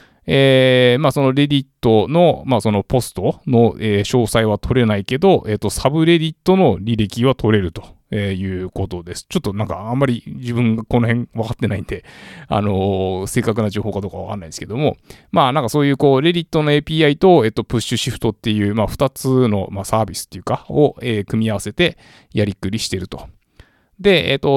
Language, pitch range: Japanese, 105-140 Hz